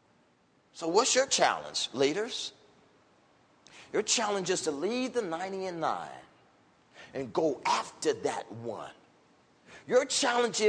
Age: 40-59